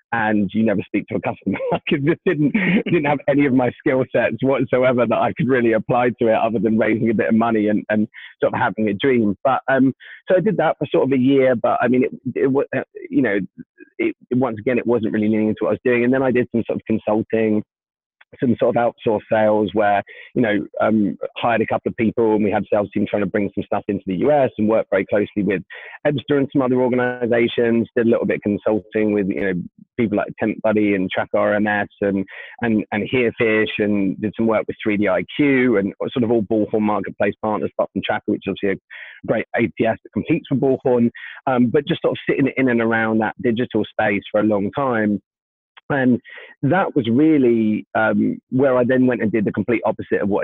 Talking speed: 230 wpm